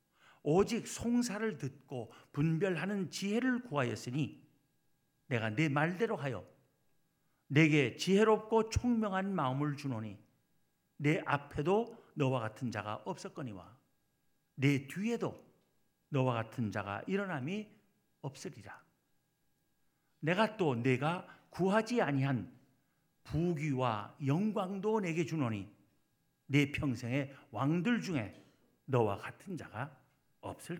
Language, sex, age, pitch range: Korean, male, 50-69, 130-175 Hz